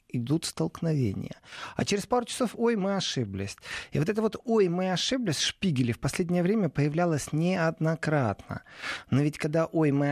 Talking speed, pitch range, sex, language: 160 wpm, 135-185 Hz, male, Russian